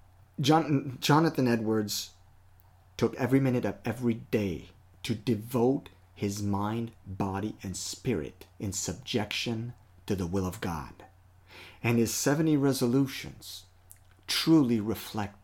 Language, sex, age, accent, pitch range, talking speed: English, male, 30-49, American, 95-125 Hz, 110 wpm